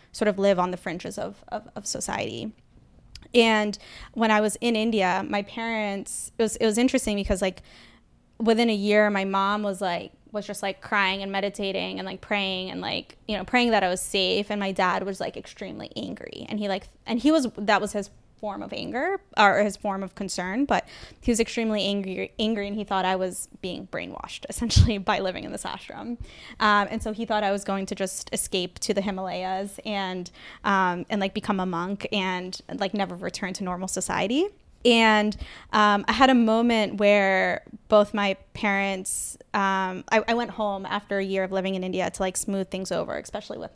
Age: 10-29